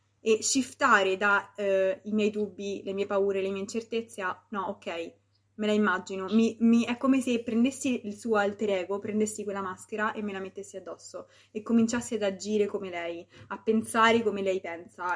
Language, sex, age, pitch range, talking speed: Italian, female, 20-39, 185-220 Hz, 190 wpm